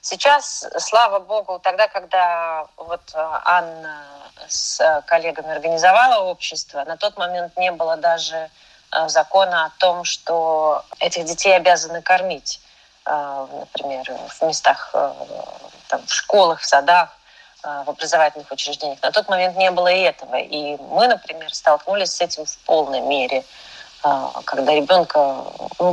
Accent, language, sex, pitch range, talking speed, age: native, Russian, female, 150-180 Hz, 125 wpm, 30-49